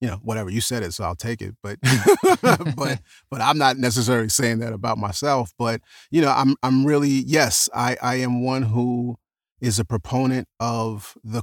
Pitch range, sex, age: 100-125 Hz, male, 30-49